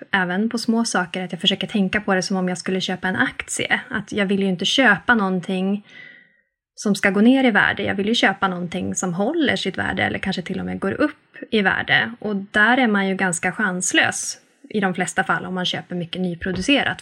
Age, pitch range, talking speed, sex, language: 20-39, 185-230 Hz, 225 wpm, female, Swedish